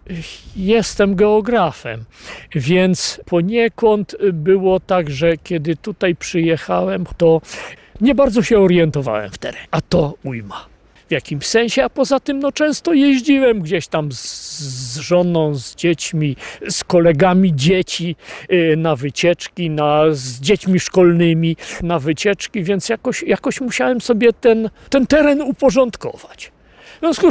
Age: 50-69